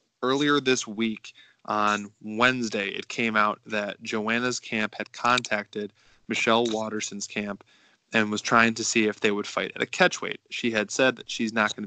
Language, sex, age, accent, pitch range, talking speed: English, male, 20-39, American, 110-120 Hz, 180 wpm